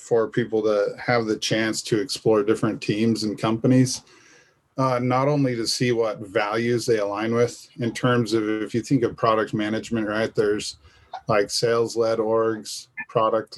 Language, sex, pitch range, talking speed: English, male, 110-135 Hz, 170 wpm